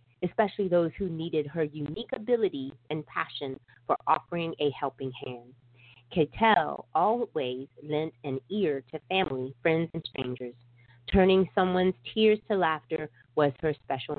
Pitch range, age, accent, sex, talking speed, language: 125-170 Hz, 30-49, American, female, 135 wpm, English